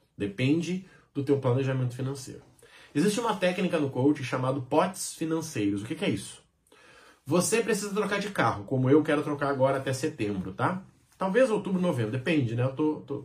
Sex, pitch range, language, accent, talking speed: male, 130-185 Hz, Portuguese, Brazilian, 175 wpm